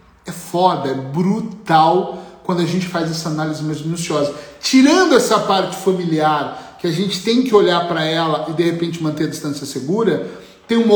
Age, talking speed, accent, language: 40-59, 180 wpm, Brazilian, Portuguese